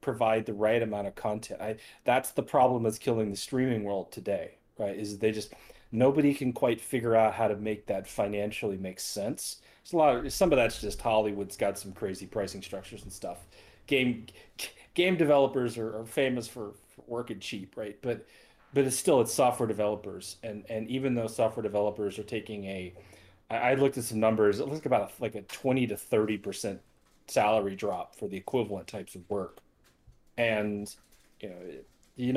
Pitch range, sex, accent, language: 105-130 Hz, male, American, English